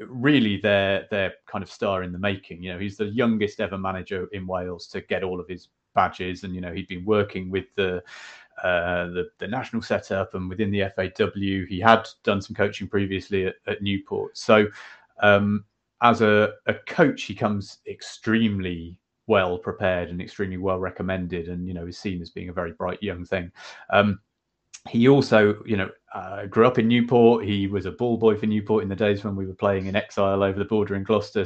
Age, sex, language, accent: 30-49, male, English, British